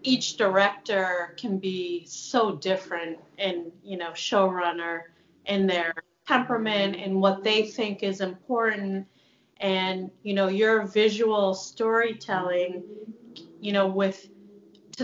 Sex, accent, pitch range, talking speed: female, American, 190-225 Hz, 115 wpm